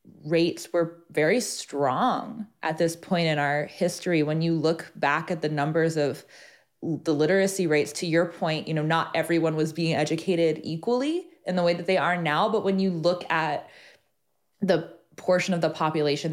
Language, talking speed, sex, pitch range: English, 185 wpm, female, 160-190 Hz